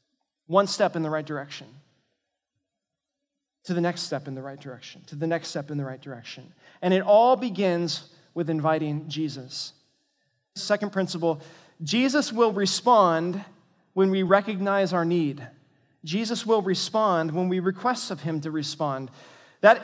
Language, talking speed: English, 150 wpm